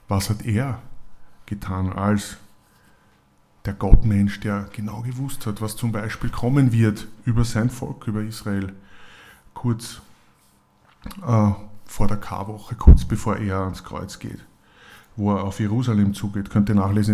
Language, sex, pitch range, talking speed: German, male, 95-110 Hz, 140 wpm